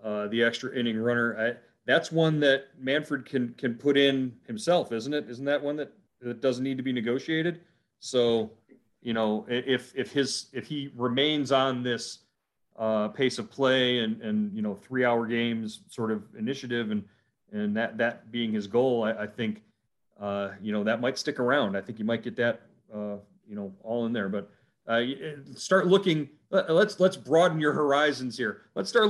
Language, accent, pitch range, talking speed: English, American, 115-140 Hz, 190 wpm